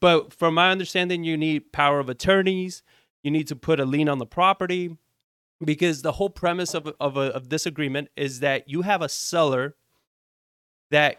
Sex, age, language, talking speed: male, 30-49, English, 180 wpm